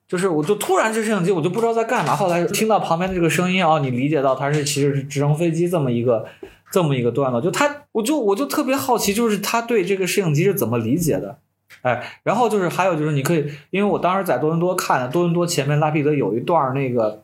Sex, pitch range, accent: male, 125-170 Hz, native